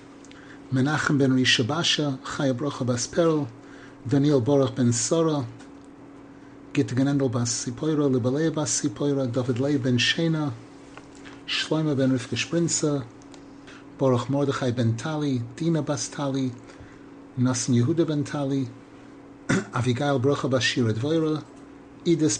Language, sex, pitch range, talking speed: English, male, 130-155 Hz, 100 wpm